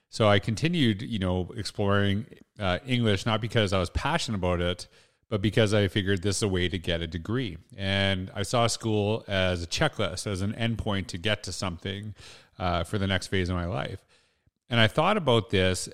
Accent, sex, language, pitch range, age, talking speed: American, male, English, 95-115 Hz, 30-49, 205 wpm